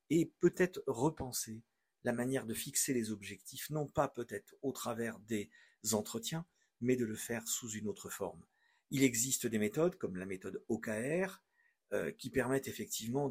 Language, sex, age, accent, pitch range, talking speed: French, male, 50-69, French, 115-155 Hz, 160 wpm